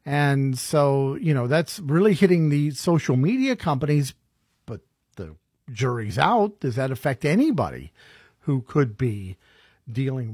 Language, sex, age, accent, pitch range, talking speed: English, male, 50-69, American, 120-160 Hz, 135 wpm